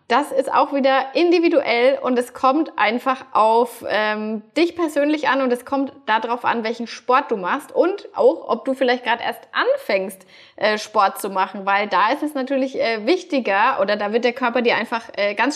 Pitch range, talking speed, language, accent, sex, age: 205-265 Hz, 195 wpm, German, German, female, 20-39